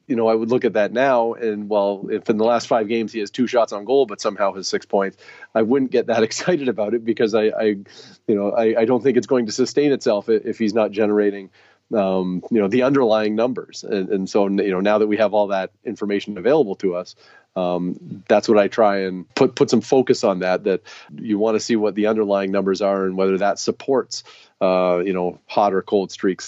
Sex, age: male, 40-59